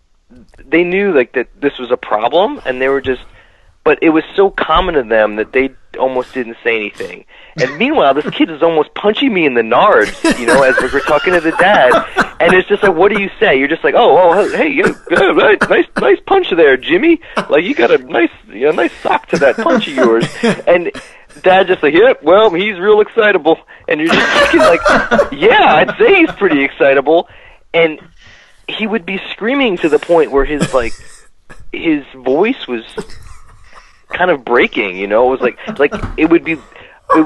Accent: American